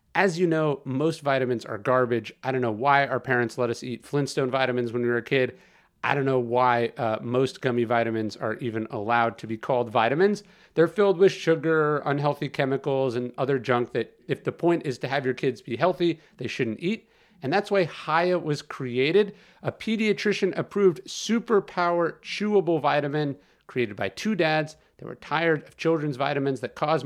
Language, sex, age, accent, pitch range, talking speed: English, male, 40-59, American, 130-175 Hz, 185 wpm